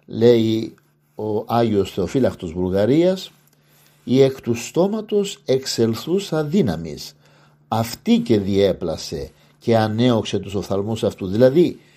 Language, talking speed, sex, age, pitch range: Greek, 100 wpm, male, 50-69, 95-145 Hz